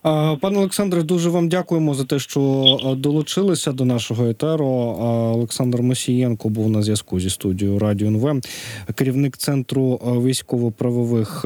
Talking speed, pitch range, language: 125 wpm, 115-135 Hz, Ukrainian